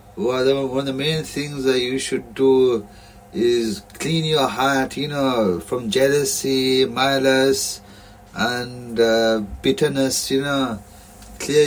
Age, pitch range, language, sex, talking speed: 30-49, 125-155 Hz, English, male, 125 wpm